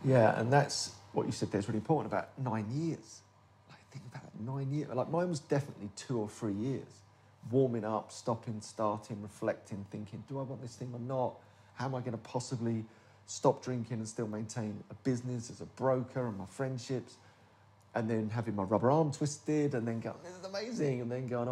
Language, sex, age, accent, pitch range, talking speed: English, male, 40-59, British, 105-130 Hz, 205 wpm